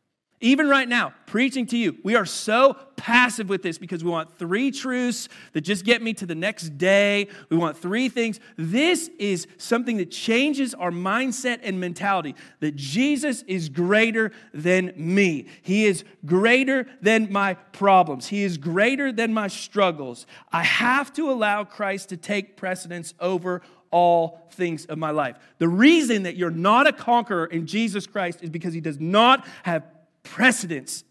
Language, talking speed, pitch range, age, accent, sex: English, 170 wpm, 170-240 Hz, 40-59, American, male